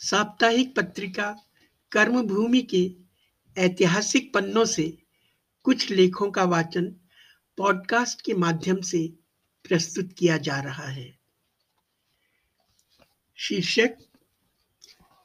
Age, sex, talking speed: 60-79, male, 85 wpm